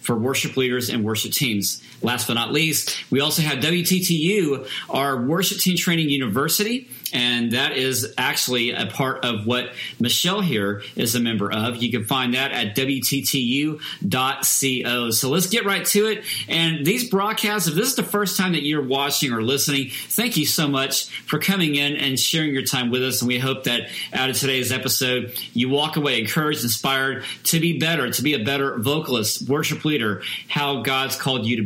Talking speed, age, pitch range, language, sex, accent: 190 wpm, 40-59, 125-155 Hz, English, male, American